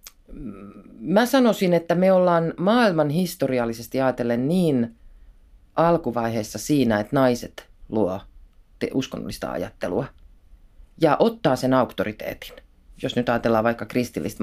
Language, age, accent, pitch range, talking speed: Finnish, 30-49, native, 105-145 Hz, 110 wpm